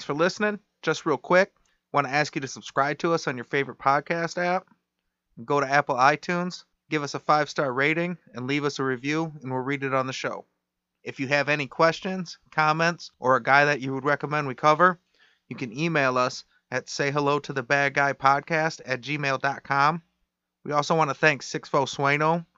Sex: male